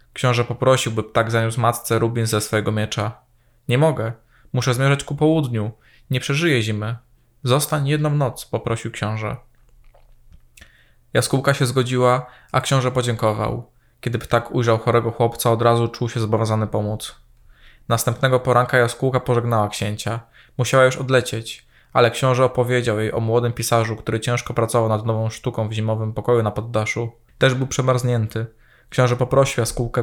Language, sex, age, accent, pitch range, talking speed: Polish, male, 20-39, native, 115-130 Hz, 145 wpm